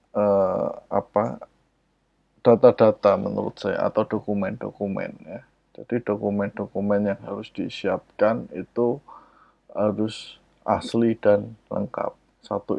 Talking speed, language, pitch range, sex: 85 wpm, Indonesian, 100-120 Hz, male